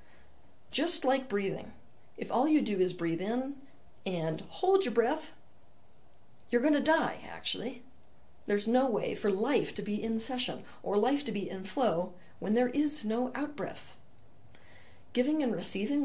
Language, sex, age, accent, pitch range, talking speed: English, female, 40-59, American, 175-240 Hz, 160 wpm